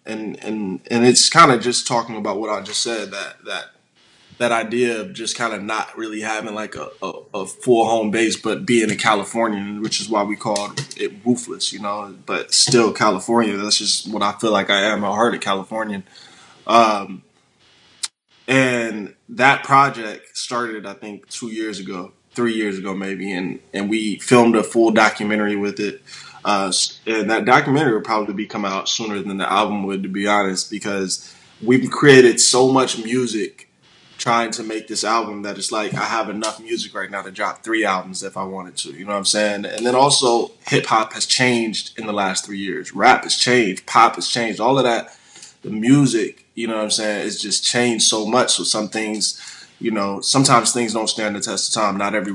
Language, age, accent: English, 20-39, American